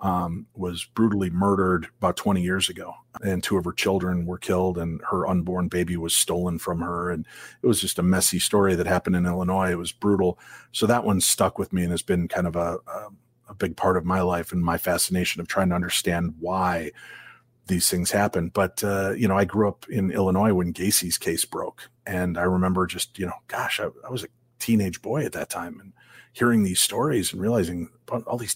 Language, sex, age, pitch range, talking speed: English, male, 40-59, 90-105 Hz, 220 wpm